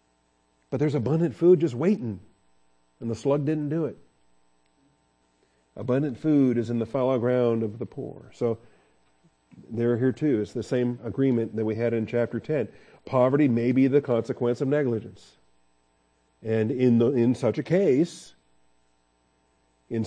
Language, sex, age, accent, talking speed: English, male, 50-69, American, 155 wpm